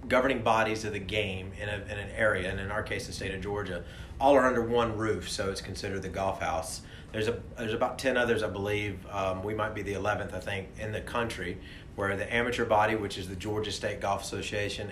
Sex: male